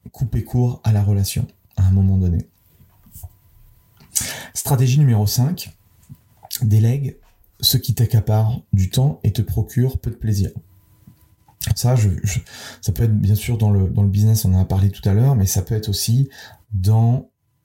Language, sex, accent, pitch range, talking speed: French, male, French, 100-115 Hz, 170 wpm